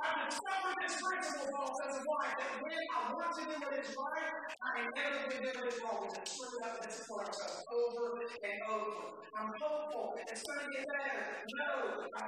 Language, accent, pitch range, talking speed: English, American, 220-300 Hz, 265 wpm